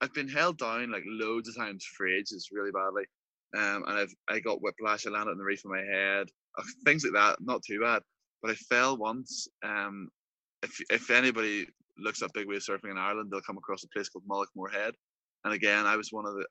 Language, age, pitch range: English, 20-39, 100-115 Hz